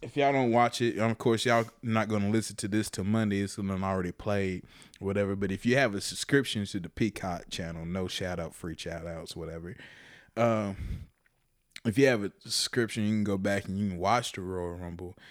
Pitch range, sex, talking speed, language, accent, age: 90-115 Hz, male, 215 wpm, English, American, 20-39